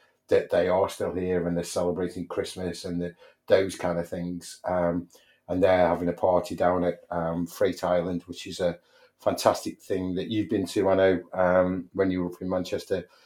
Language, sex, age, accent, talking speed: English, male, 30-49, British, 200 wpm